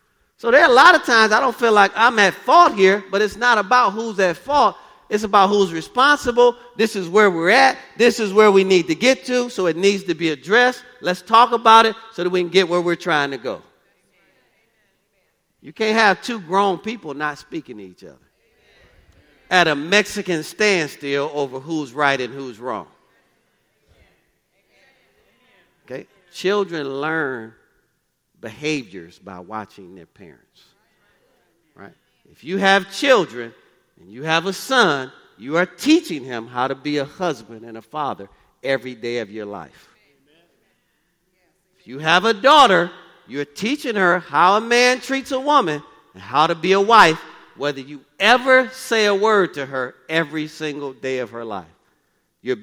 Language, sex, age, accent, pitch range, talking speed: English, male, 40-59, American, 135-215 Hz, 170 wpm